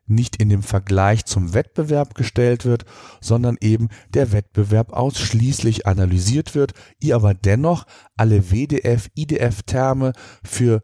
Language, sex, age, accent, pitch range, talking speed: German, male, 40-59, German, 105-125 Hz, 115 wpm